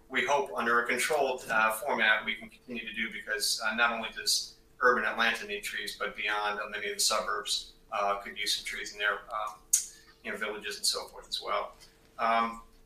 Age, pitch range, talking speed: 30-49, 110-120 Hz, 210 wpm